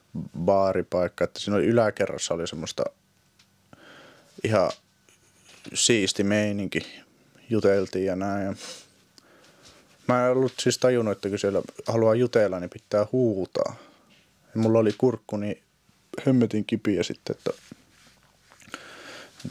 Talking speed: 115 wpm